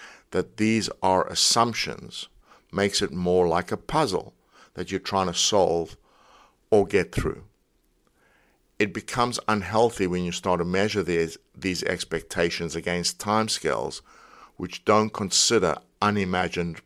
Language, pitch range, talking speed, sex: English, 90-105 Hz, 125 wpm, male